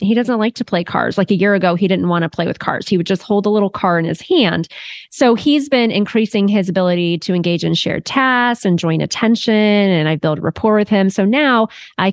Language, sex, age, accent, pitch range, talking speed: English, female, 20-39, American, 175-220 Hz, 245 wpm